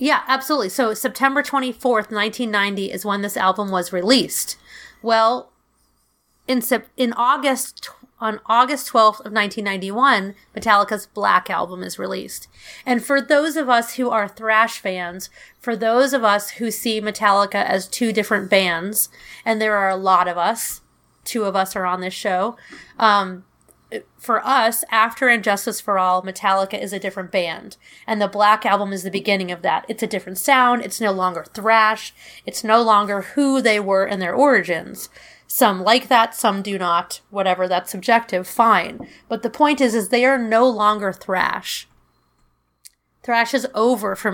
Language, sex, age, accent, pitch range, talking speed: English, female, 30-49, American, 195-245 Hz, 165 wpm